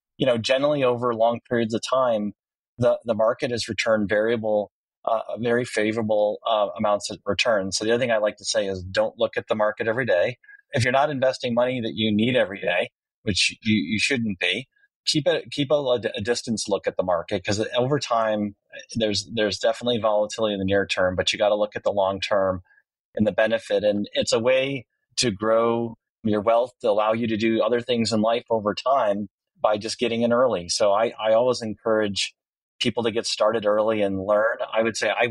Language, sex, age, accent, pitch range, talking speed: English, male, 30-49, American, 105-120 Hz, 210 wpm